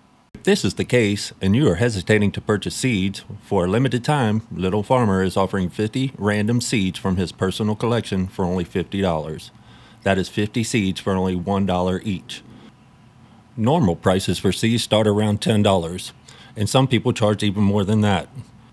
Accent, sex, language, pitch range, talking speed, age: American, male, English, 95-115 Hz, 170 wpm, 40-59